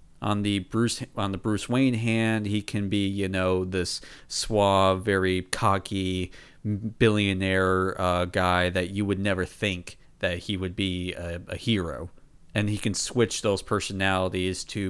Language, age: English, 40-59